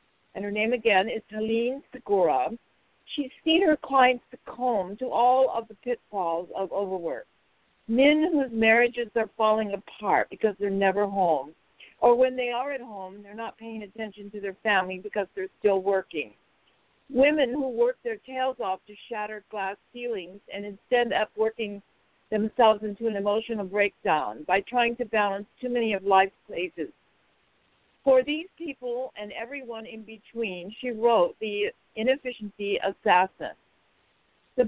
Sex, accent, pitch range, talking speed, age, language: female, American, 205-250 Hz, 150 wpm, 60-79, English